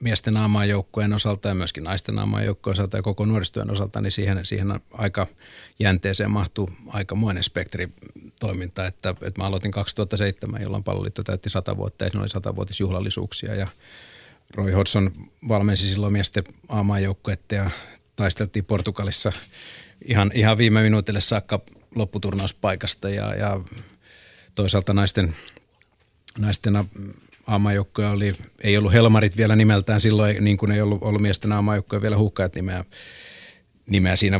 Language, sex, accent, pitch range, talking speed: Finnish, male, native, 95-105 Hz, 130 wpm